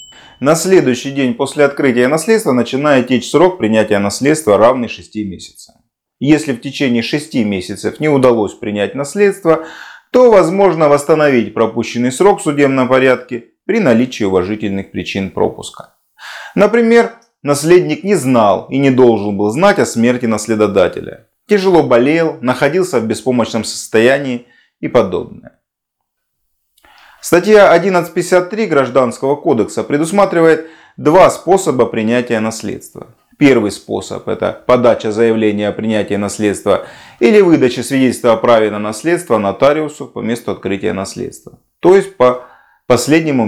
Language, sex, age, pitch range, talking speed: Russian, male, 30-49, 110-165 Hz, 125 wpm